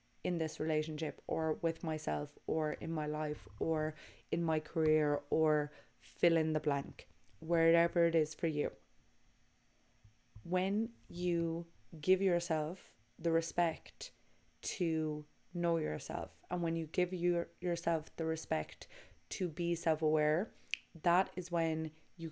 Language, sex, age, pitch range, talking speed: English, female, 20-39, 155-180 Hz, 130 wpm